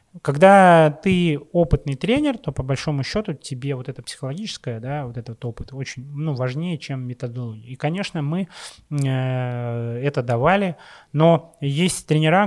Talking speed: 145 wpm